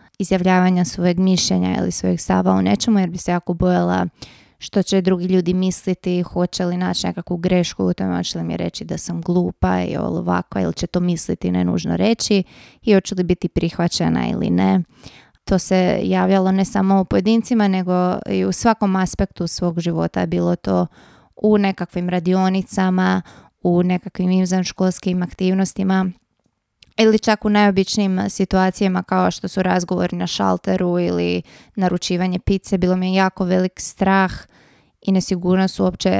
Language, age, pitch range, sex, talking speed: Croatian, 20-39, 170-195 Hz, female, 155 wpm